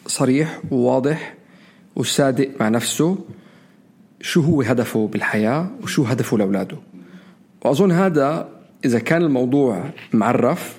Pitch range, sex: 125-190 Hz, male